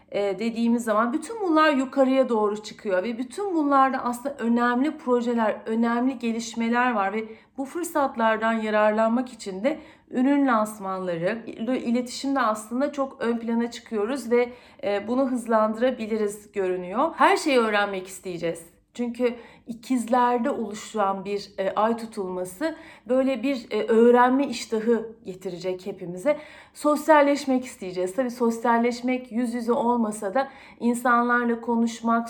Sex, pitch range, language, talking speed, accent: female, 210-260 Hz, Turkish, 115 wpm, native